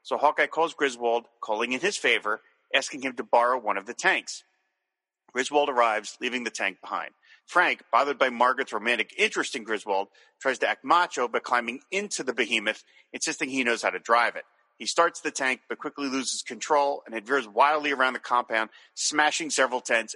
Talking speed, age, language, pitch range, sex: 190 wpm, 40-59, English, 120-150 Hz, male